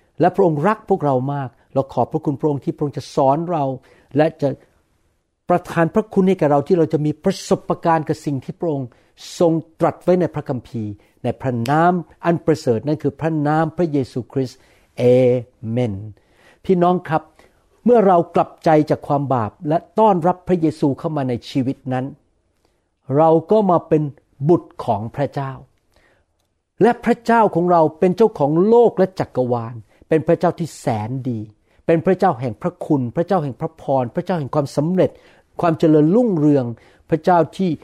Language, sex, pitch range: Thai, male, 130-175 Hz